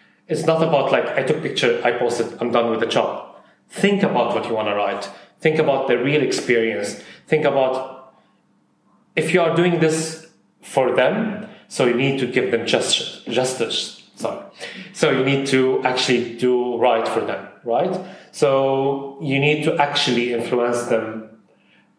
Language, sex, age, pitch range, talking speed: English, male, 30-49, 120-155 Hz, 170 wpm